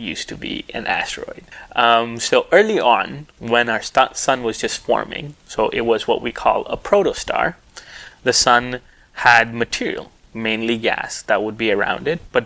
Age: 20-39